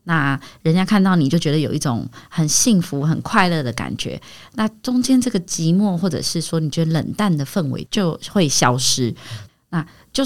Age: 20-39